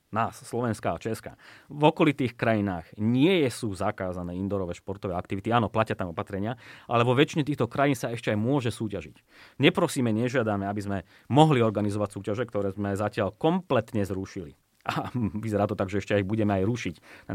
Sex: male